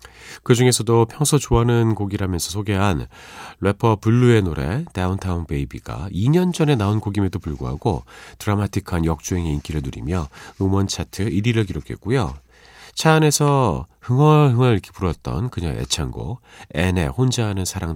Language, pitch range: Korean, 85-125 Hz